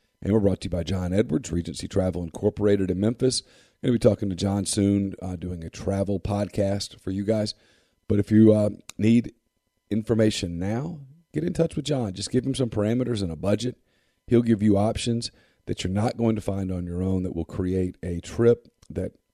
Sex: male